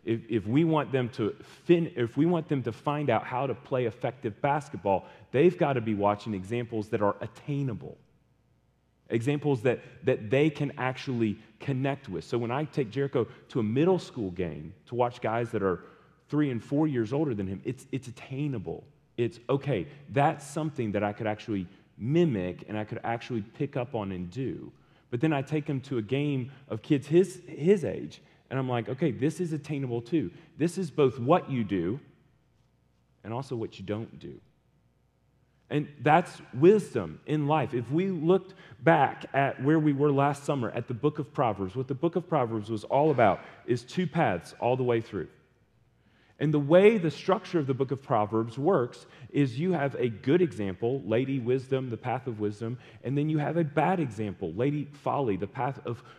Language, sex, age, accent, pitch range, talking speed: English, male, 30-49, American, 115-150 Hz, 190 wpm